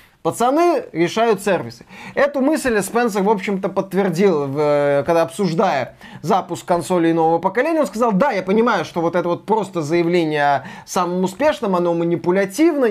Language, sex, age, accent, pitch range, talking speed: Russian, male, 20-39, native, 175-230 Hz, 145 wpm